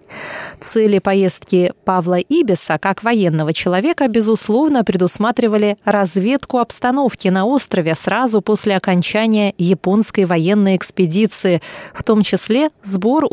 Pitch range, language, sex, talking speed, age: 185-245 Hz, Russian, female, 105 wpm, 30-49